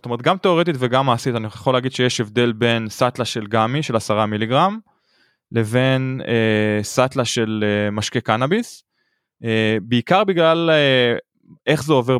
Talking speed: 155 wpm